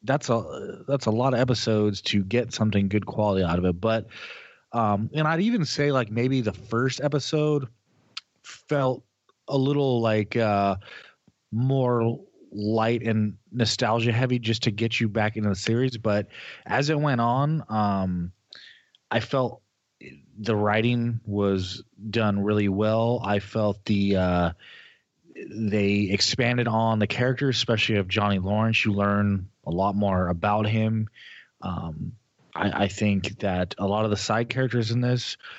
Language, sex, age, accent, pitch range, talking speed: English, male, 30-49, American, 105-120 Hz, 155 wpm